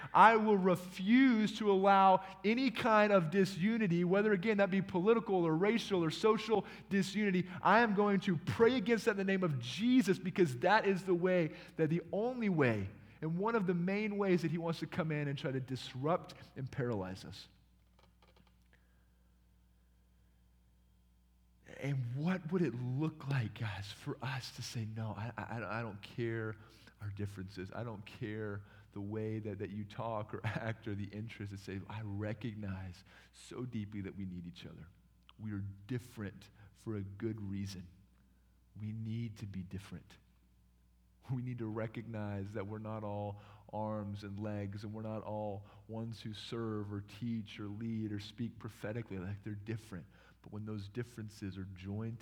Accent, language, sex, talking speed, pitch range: American, English, male, 170 wpm, 100-170 Hz